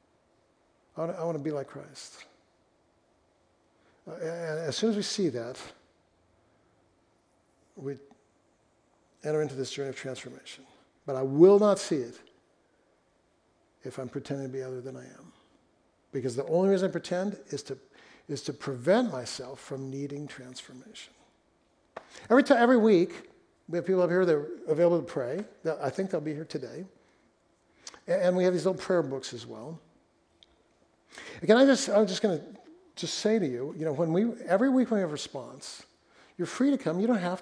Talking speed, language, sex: 175 wpm, English, male